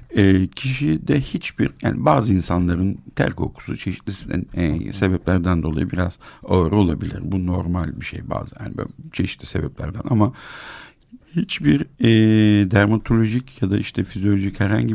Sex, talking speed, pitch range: male, 135 wpm, 90-115 Hz